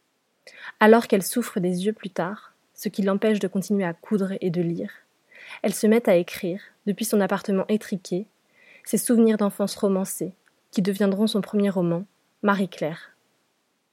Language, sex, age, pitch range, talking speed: French, female, 20-39, 190-215 Hz, 155 wpm